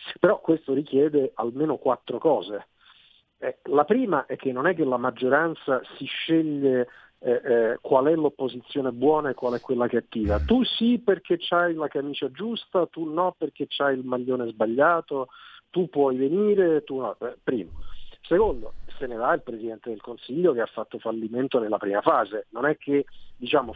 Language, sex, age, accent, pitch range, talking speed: Italian, male, 50-69, native, 120-165 Hz, 175 wpm